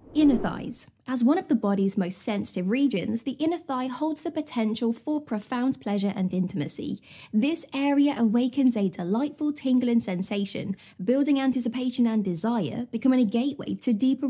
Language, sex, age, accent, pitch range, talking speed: English, female, 20-39, British, 210-280 Hz, 155 wpm